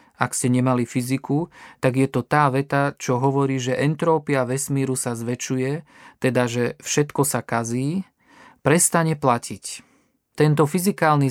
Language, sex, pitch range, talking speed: Slovak, male, 125-155 Hz, 135 wpm